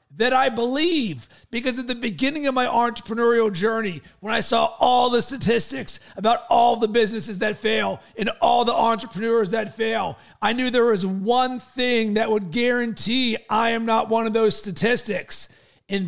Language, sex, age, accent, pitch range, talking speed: English, male, 40-59, American, 210-240 Hz, 170 wpm